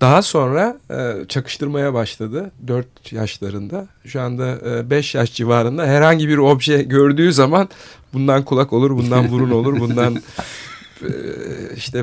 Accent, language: native, Turkish